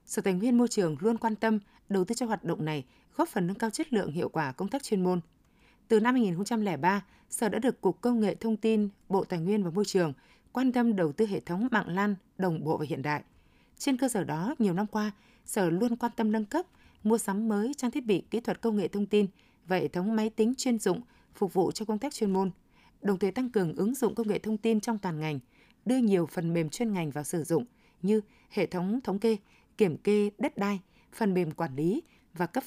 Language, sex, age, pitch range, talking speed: Vietnamese, female, 20-39, 180-230 Hz, 240 wpm